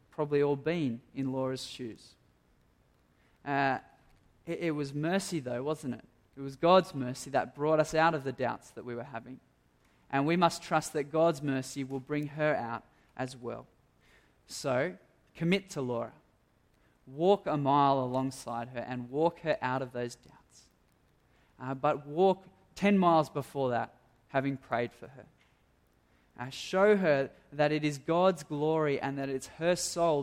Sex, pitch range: male, 130-155 Hz